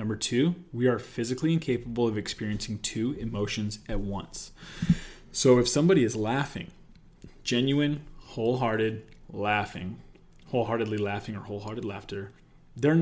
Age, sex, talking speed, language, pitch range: 20-39, male, 120 wpm, English, 110-140 Hz